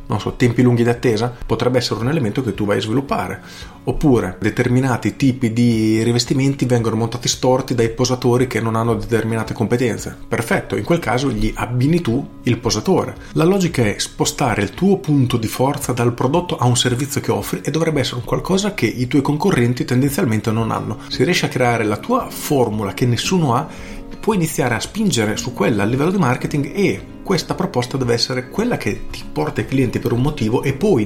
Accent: native